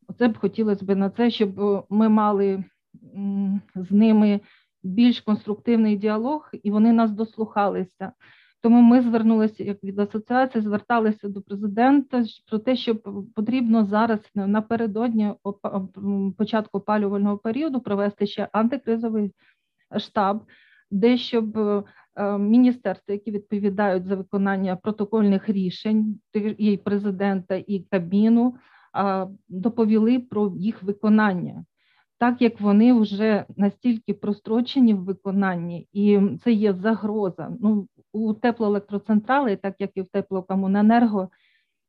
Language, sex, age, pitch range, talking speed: Ukrainian, female, 40-59, 200-225 Hz, 110 wpm